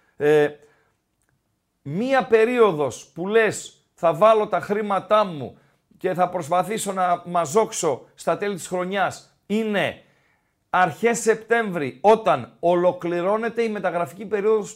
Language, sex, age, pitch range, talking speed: Greek, male, 50-69, 160-220 Hz, 110 wpm